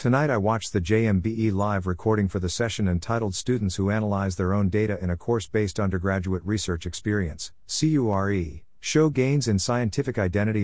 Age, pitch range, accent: 50-69, 90-115 Hz, American